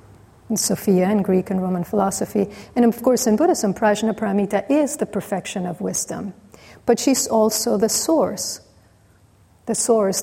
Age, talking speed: 40-59, 145 wpm